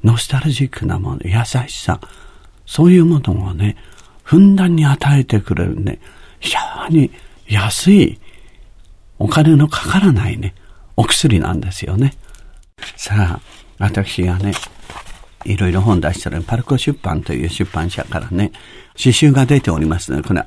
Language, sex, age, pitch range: Japanese, male, 50-69, 90-130 Hz